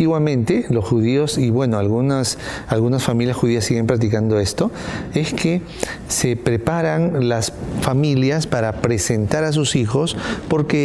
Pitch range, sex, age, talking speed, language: 120-150 Hz, male, 40-59, 140 wpm, English